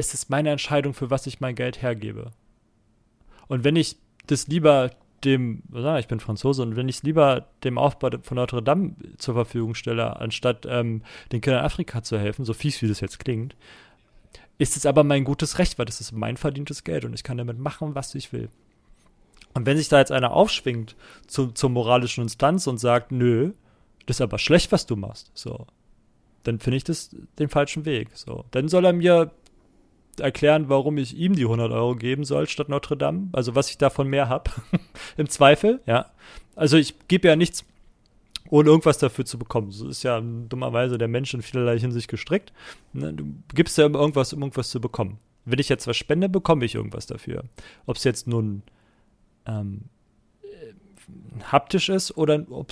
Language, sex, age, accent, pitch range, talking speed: German, male, 30-49, German, 115-150 Hz, 195 wpm